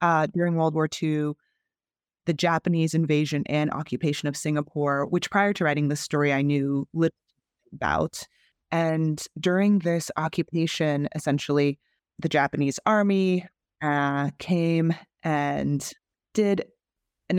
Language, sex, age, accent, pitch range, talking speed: English, female, 20-39, American, 140-170 Hz, 120 wpm